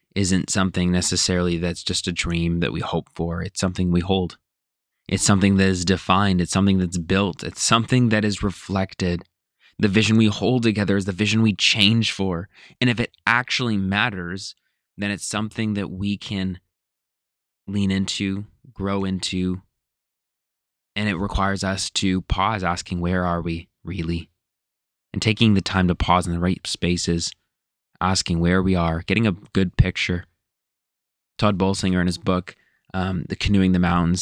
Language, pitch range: English, 85-100 Hz